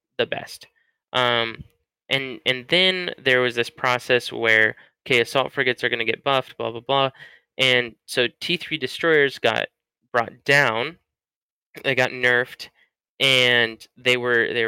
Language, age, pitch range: English, 10-29, 115-130 Hz